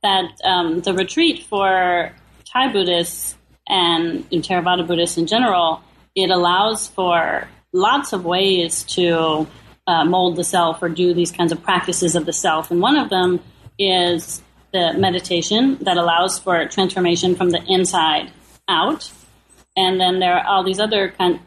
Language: English